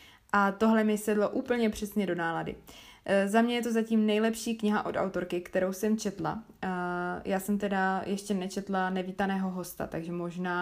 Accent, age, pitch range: native, 20-39, 190-215 Hz